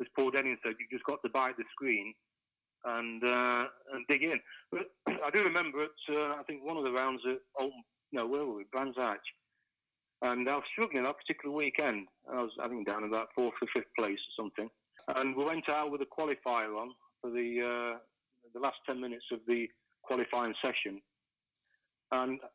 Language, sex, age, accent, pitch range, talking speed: English, male, 40-59, British, 120-145 Hz, 200 wpm